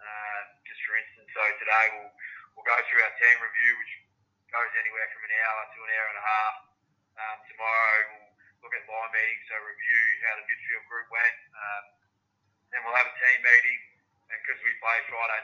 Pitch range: 105-120 Hz